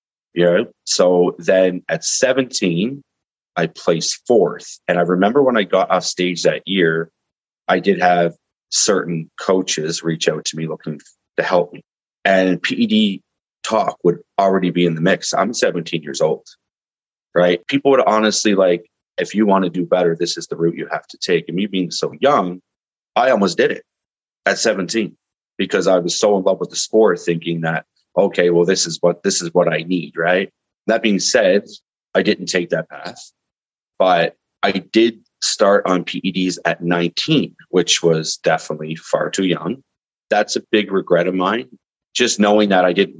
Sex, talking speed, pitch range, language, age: male, 180 wpm, 85-100 Hz, English, 30-49